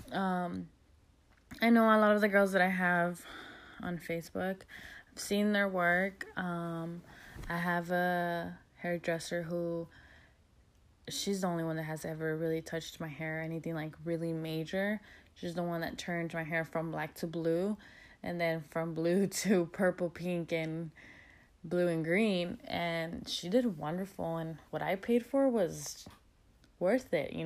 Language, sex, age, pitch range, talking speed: English, female, 20-39, 165-200 Hz, 160 wpm